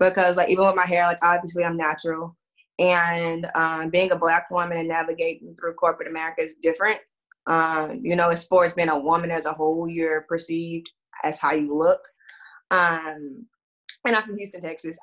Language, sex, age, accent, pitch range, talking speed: English, female, 20-39, American, 165-185 Hz, 190 wpm